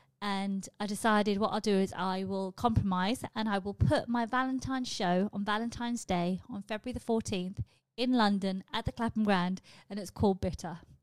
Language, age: English, 30-49